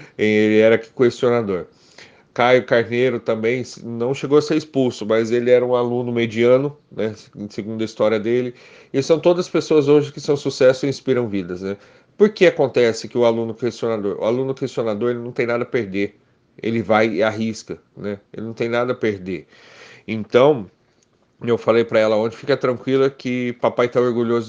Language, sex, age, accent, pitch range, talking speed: Portuguese, male, 40-59, Brazilian, 110-135 Hz, 180 wpm